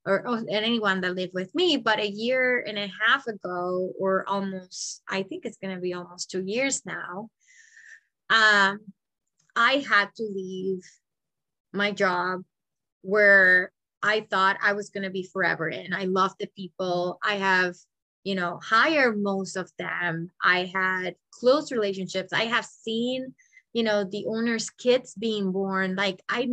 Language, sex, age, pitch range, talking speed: English, female, 20-39, 185-230 Hz, 160 wpm